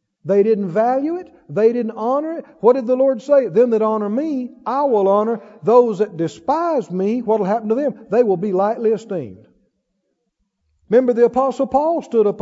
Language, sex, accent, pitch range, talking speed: English, male, American, 195-260 Hz, 195 wpm